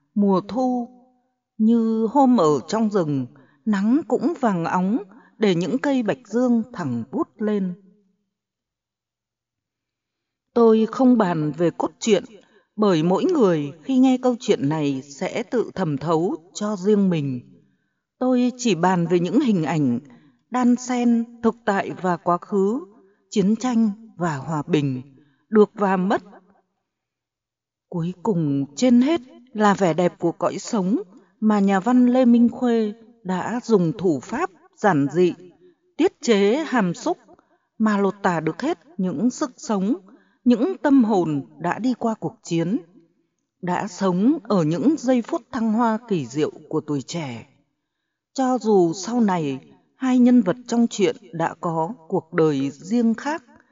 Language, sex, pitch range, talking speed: Vietnamese, female, 175-245 Hz, 145 wpm